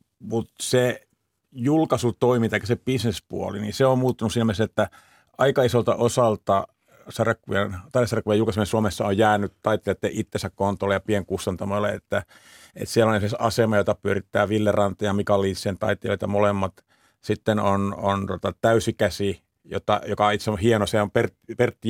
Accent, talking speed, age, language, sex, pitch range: native, 150 wpm, 50-69, Finnish, male, 100-115 Hz